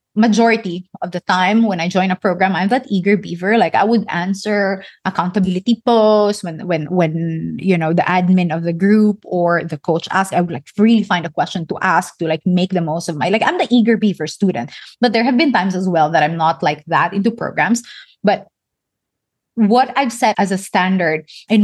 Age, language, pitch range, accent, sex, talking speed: 20-39, English, 180-235 Hz, Filipino, female, 215 wpm